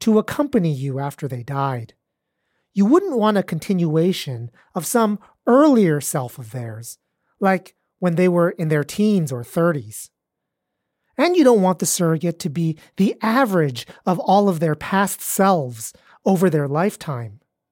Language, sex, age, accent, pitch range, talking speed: English, male, 30-49, American, 140-205 Hz, 150 wpm